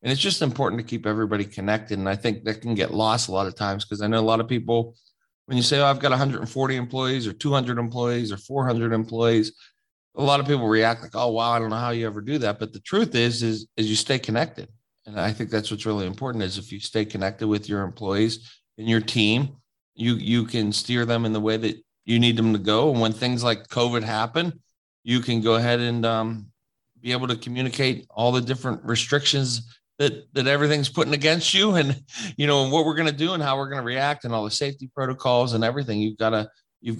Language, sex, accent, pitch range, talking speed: English, male, American, 110-130 Hz, 240 wpm